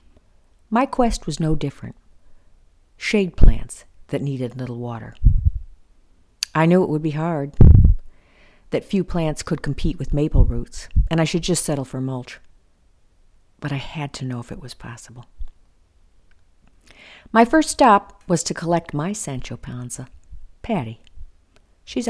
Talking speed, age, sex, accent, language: 145 wpm, 50-69, female, American, English